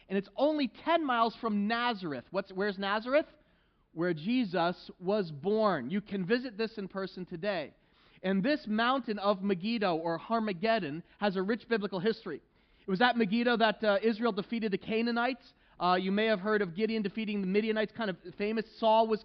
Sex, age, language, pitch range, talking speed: male, 30-49, English, 195-235 Hz, 180 wpm